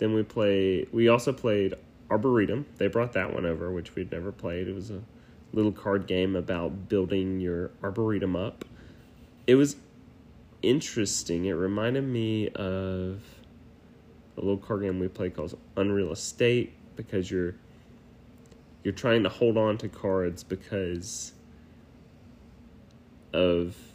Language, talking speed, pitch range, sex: English, 135 wpm, 95-115 Hz, male